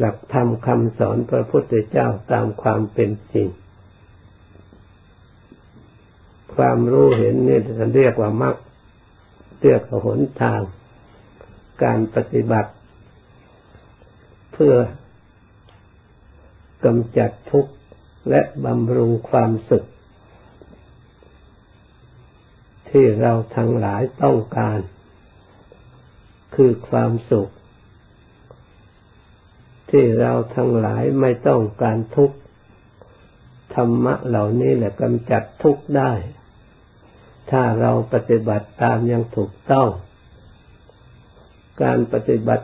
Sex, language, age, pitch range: male, Thai, 60-79, 100-120 Hz